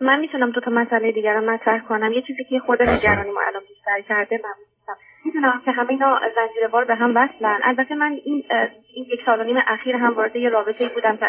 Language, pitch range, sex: Persian, 220-260 Hz, female